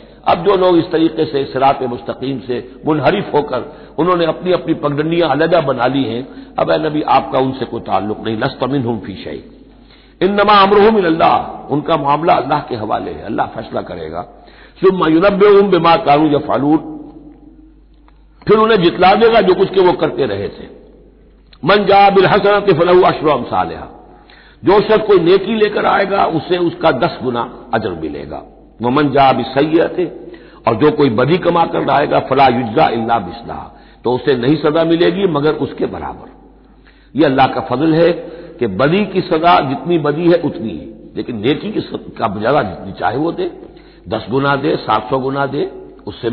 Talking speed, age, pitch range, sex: 165 wpm, 60-79, 135-190 Hz, male